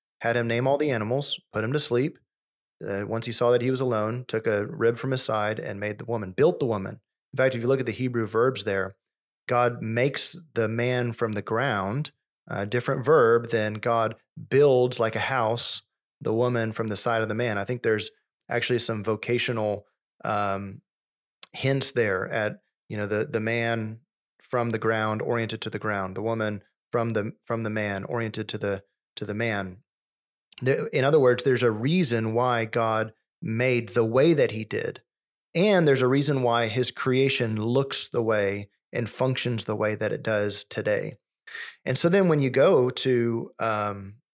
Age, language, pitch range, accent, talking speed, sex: 30-49, English, 110-130 Hz, American, 190 wpm, male